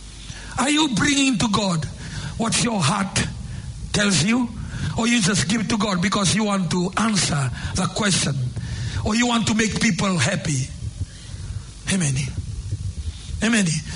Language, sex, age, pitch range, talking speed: English, male, 60-79, 145-230 Hz, 140 wpm